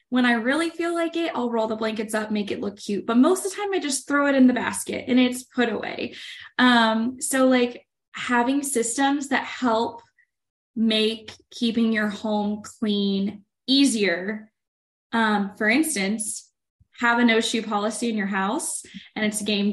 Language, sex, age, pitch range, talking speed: English, female, 20-39, 205-245 Hz, 175 wpm